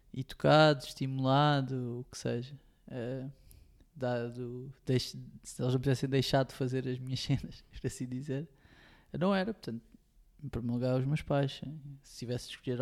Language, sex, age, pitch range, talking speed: Portuguese, male, 20-39, 125-140 Hz, 160 wpm